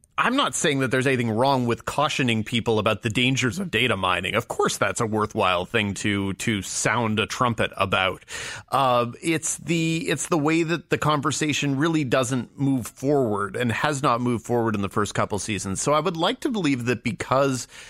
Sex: male